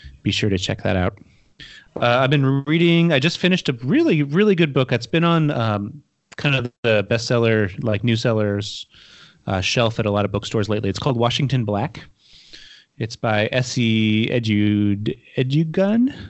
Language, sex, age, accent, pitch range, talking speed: English, male, 30-49, American, 105-135 Hz, 170 wpm